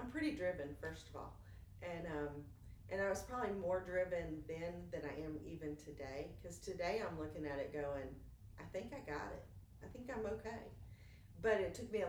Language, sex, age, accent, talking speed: English, female, 40-59, American, 200 wpm